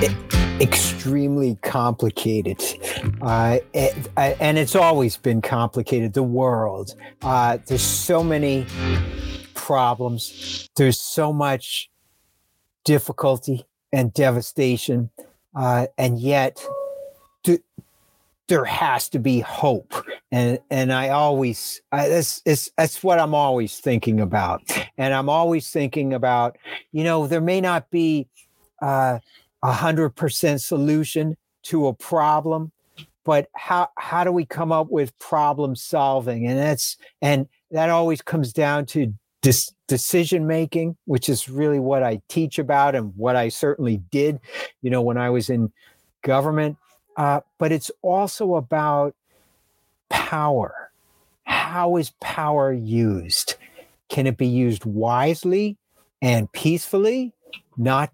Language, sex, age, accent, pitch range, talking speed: English, male, 50-69, American, 120-155 Hz, 125 wpm